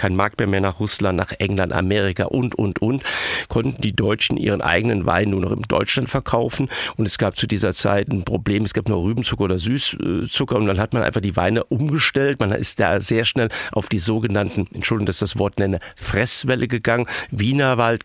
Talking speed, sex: 205 wpm, male